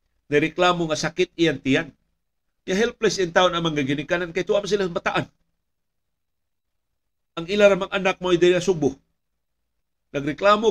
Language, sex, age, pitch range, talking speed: Filipino, male, 50-69, 115-180 Hz, 130 wpm